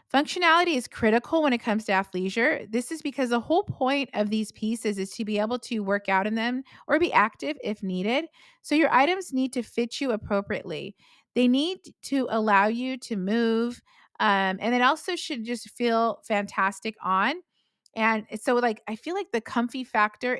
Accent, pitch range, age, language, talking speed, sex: American, 200-260 Hz, 30-49, English, 190 wpm, female